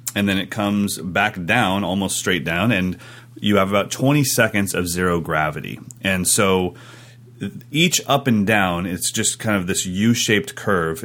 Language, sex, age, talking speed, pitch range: English, male, 30-49, 175 wpm, 90-120 Hz